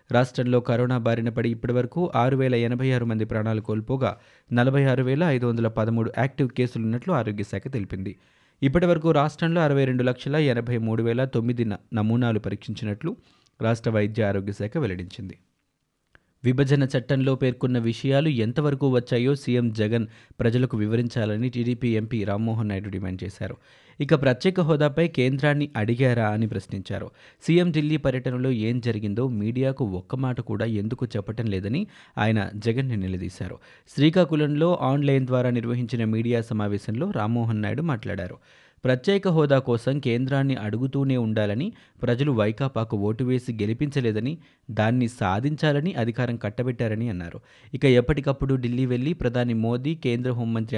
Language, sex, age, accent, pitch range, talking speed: Telugu, male, 20-39, native, 110-135 Hz, 130 wpm